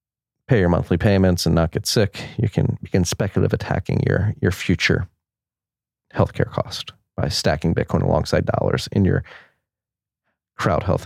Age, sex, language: 30-49, male, English